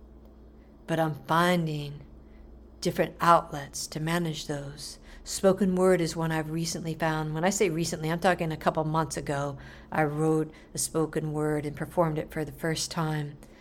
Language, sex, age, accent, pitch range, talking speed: English, female, 60-79, American, 140-170 Hz, 165 wpm